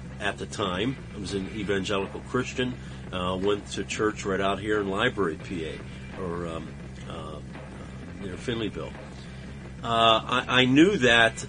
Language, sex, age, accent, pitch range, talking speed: English, male, 50-69, American, 70-105 Hz, 150 wpm